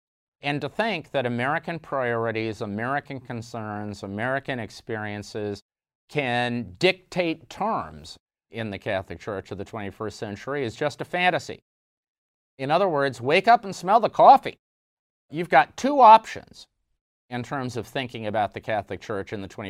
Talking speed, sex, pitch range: 145 wpm, male, 105-150 Hz